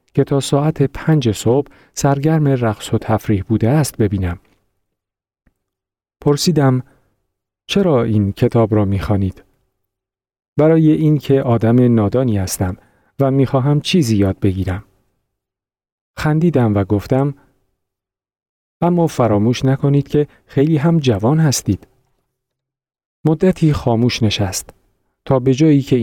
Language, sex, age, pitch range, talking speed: Persian, male, 40-59, 100-140 Hz, 110 wpm